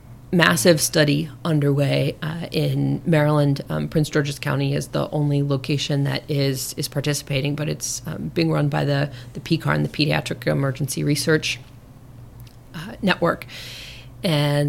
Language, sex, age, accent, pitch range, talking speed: English, female, 30-49, American, 130-155 Hz, 140 wpm